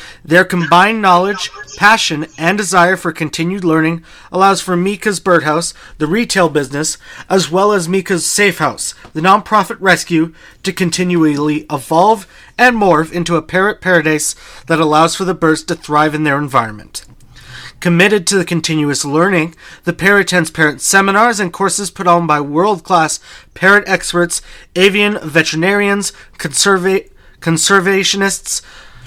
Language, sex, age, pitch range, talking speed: English, male, 30-49, 160-195 Hz, 135 wpm